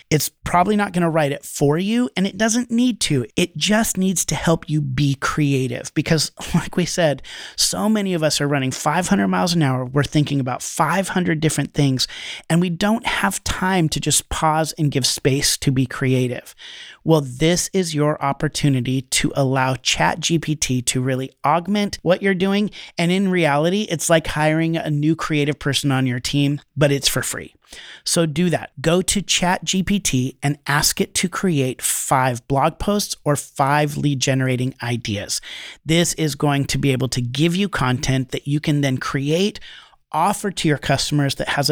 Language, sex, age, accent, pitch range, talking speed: English, male, 30-49, American, 135-175 Hz, 185 wpm